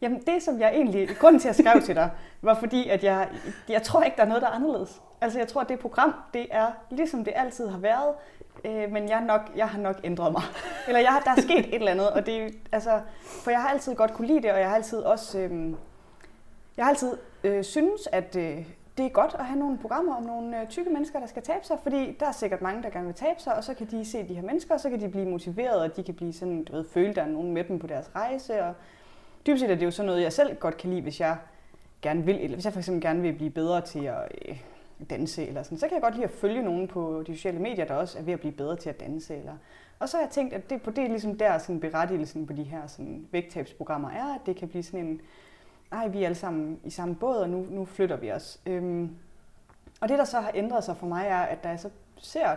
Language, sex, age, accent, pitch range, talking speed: Danish, female, 20-39, native, 175-255 Hz, 270 wpm